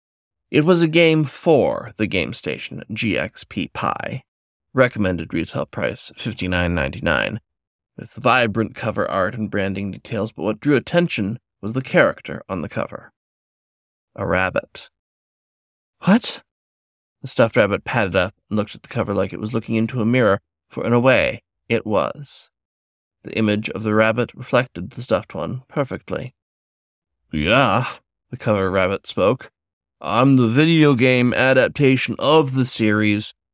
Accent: American